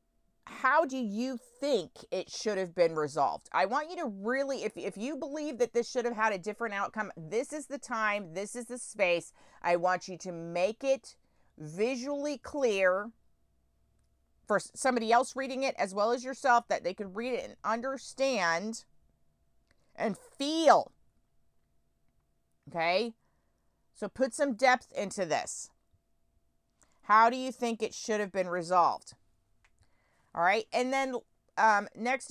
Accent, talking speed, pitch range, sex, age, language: American, 150 wpm, 185-265 Hz, female, 40-59, English